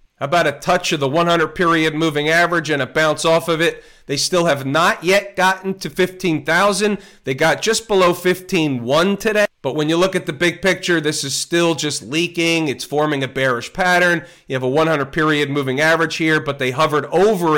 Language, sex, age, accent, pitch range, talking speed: English, male, 40-59, American, 145-175 Hz, 195 wpm